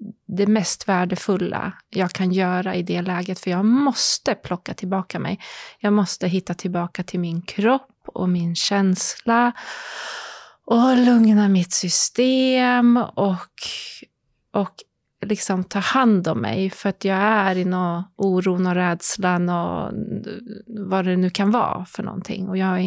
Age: 30-49